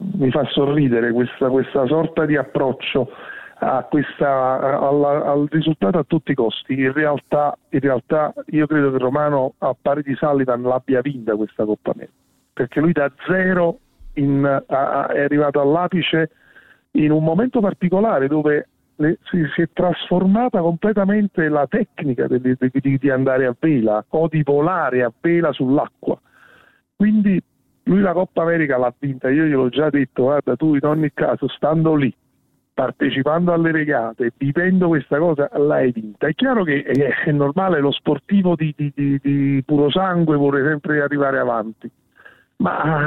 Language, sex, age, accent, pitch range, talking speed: Italian, male, 40-59, native, 140-170 Hz, 160 wpm